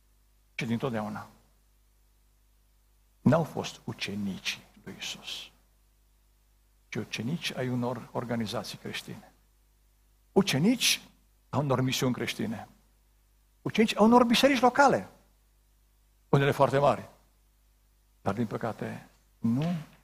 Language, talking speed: Romanian, 90 wpm